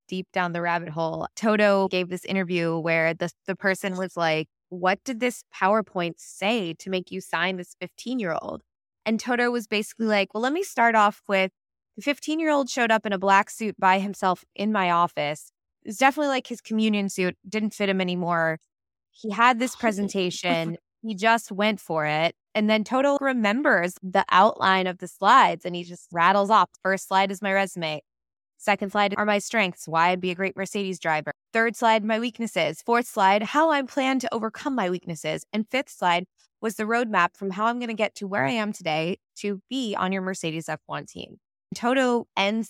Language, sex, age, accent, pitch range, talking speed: English, female, 20-39, American, 180-220 Hz, 195 wpm